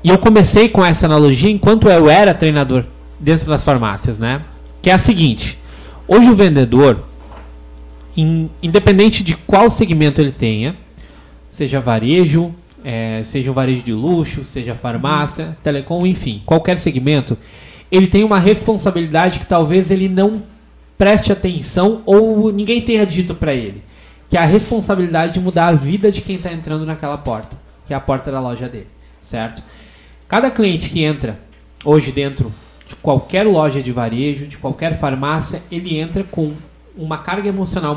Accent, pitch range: Brazilian, 130-180 Hz